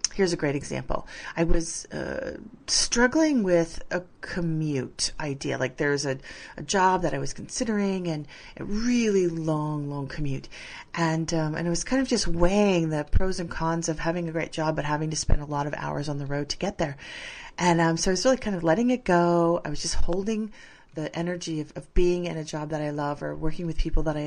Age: 30-49